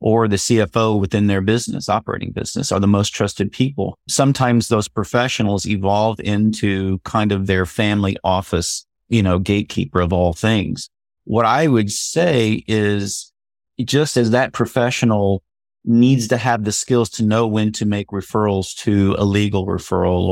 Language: English